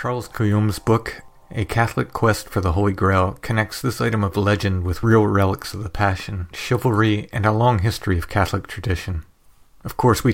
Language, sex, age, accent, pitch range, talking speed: English, male, 40-59, American, 95-110 Hz, 185 wpm